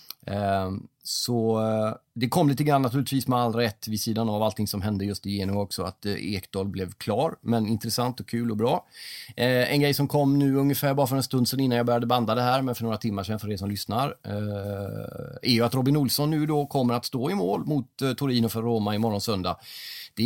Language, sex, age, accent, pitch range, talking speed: Swedish, male, 30-49, native, 100-125 Hz, 220 wpm